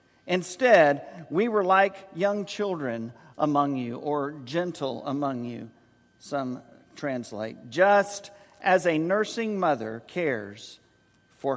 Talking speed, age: 110 wpm, 50-69